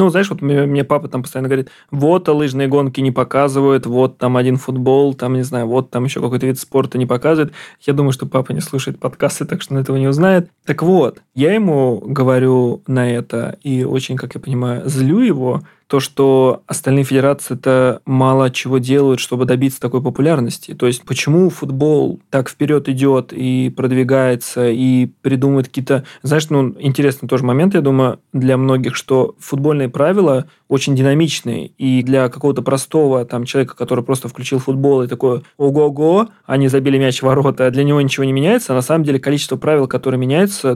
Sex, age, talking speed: male, 20-39, 180 wpm